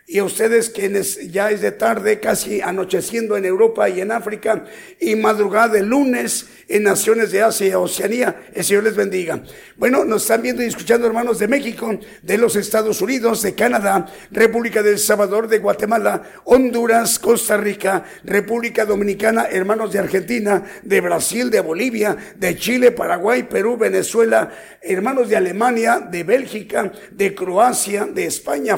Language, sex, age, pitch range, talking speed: Spanish, male, 50-69, 195-230 Hz, 155 wpm